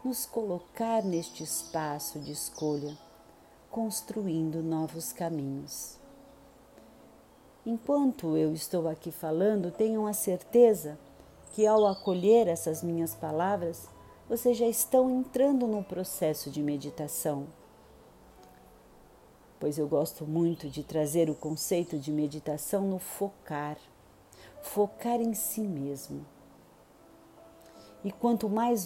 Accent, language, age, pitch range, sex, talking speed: Brazilian, Portuguese, 50-69, 155-225 Hz, female, 105 wpm